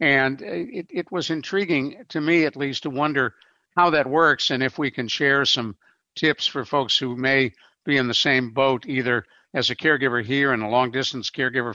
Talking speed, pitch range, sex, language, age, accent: 205 wpm, 120-150 Hz, male, English, 60-79, American